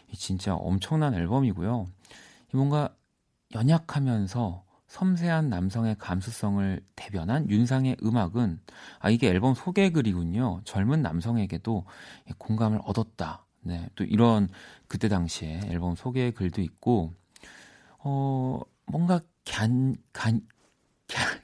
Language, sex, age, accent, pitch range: Korean, male, 40-59, native, 90-125 Hz